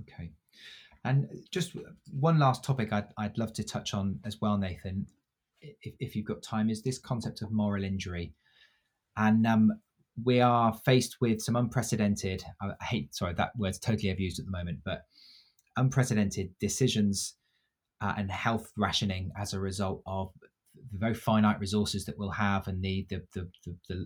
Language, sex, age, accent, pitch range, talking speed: English, male, 20-39, British, 95-115 Hz, 170 wpm